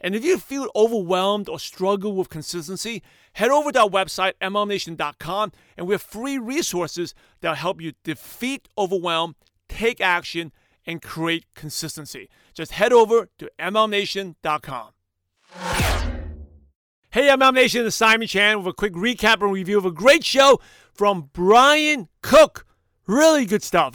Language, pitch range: English, 175-230 Hz